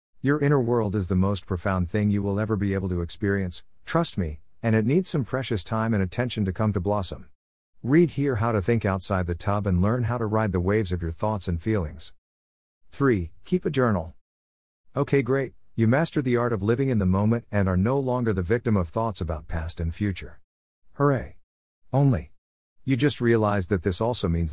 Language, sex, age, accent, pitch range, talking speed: English, male, 50-69, American, 85-115 Hz, 210 wpm